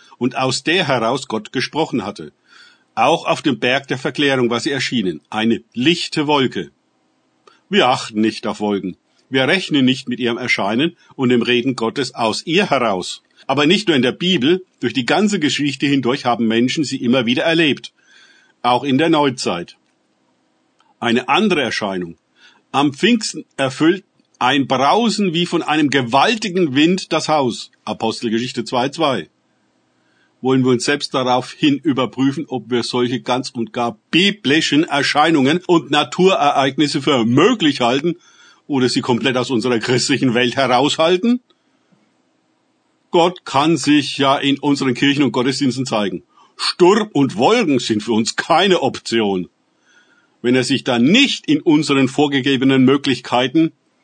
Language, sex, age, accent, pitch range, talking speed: German, male, 50-69, German, 120-155 Hz, 145 wpm